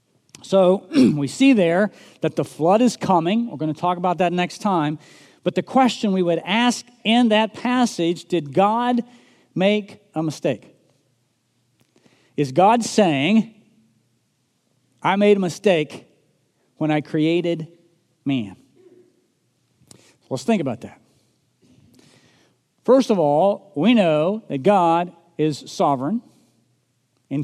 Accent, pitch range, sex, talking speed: American, 155-215 Hz, male, 120 wpm